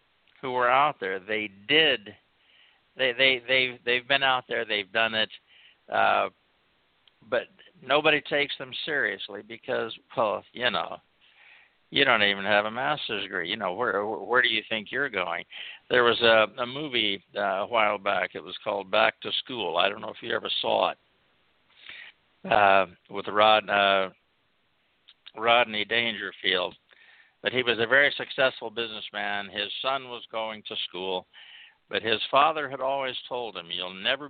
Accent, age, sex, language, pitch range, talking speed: American, 60-79, male, English, 105-130 Hz, 165 wpm